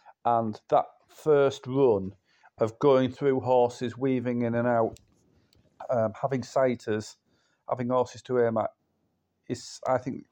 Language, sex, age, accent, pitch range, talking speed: English, male, 40-59, British, 100-125 Hz, 135 wpm